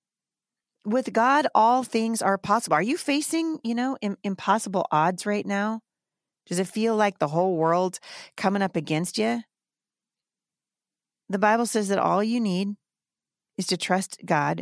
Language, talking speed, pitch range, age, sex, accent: English, 150 wpm, 160-215 Hz, 40-59, female, American